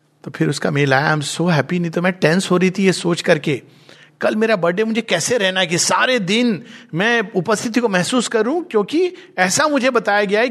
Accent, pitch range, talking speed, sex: native, 160-215 Hz, 230 wpm, male